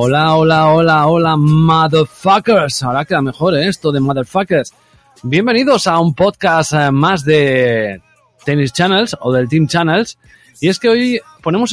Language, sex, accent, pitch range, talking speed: Spanish, male, Spanish, 135-180 Hz, 150 wpm